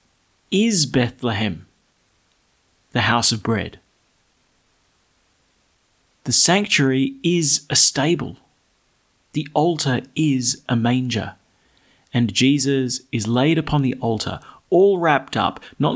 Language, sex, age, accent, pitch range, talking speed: English, male, 30-49, Australian, 105-135 Hz, 100 wpm